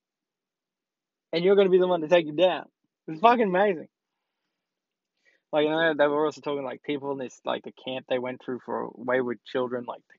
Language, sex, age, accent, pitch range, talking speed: English, male, 10-29, Australian, 130-175 Hz, 220 wpm